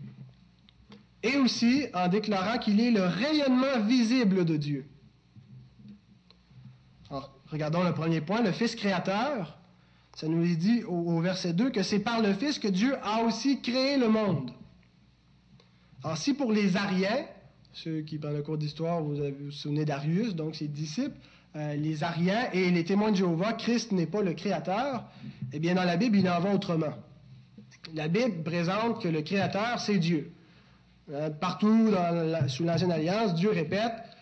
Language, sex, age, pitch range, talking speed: French, male, 30-49, 155-220 Hz, 170 wpm